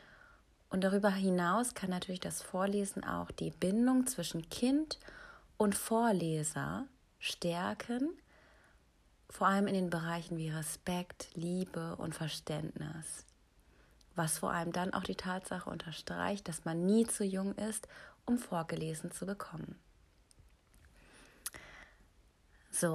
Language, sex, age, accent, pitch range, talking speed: German, female, 30-49, German, 175-225 Hz, 115 wpm